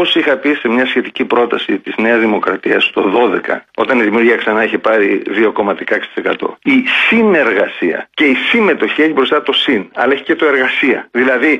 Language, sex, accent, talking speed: Greek, male, native, 175 wpm